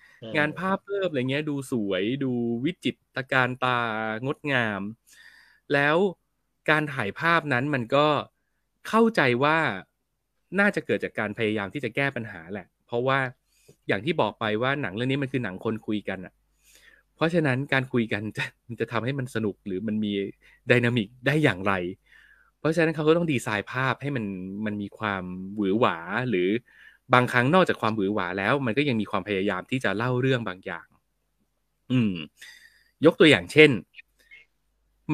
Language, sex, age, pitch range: Thai, male, 20-39, 105-145 Hz